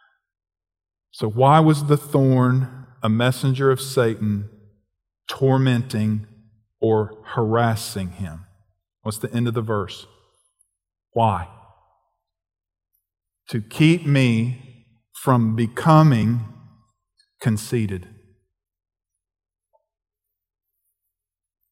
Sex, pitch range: male, 95-125 Hz